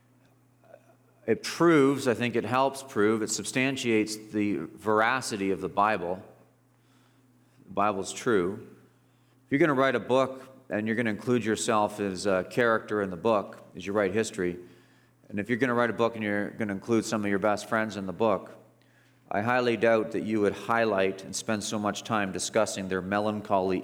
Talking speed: 190 wpm